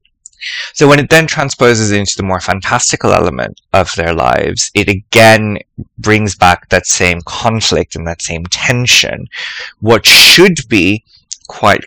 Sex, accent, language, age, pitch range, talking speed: male, British, English, 20-39, 90-115 Hz, 140 wpm